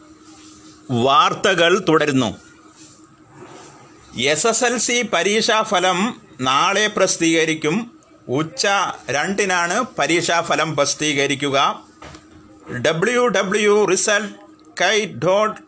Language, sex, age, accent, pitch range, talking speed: Malayalam, male, 30-49, native, 160-215 Hz, 70 wpm